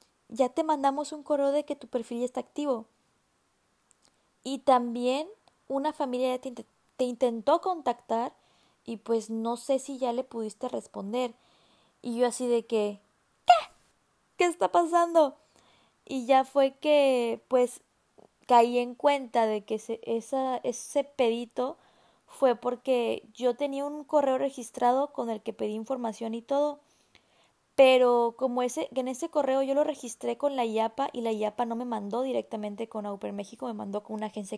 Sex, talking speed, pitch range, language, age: female, 160 wpm, 225-270 Hz, Spanish, 20-39